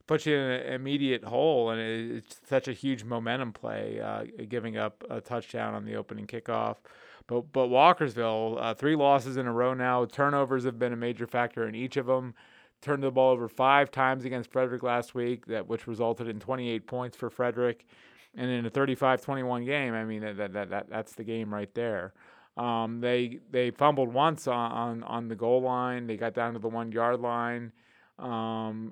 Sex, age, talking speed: male, 30-49, 195 wpm